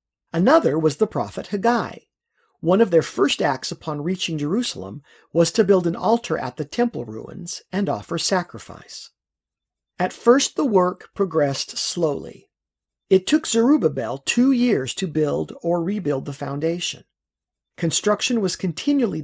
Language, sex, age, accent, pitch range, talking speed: English, male, 50-69, American, 155-210 Hz, 140 wpm